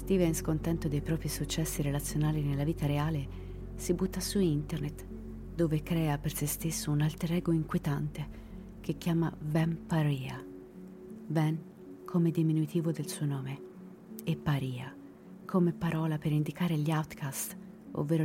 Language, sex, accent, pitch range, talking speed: Italian, female, native, 145-175 Hz, 135 wpm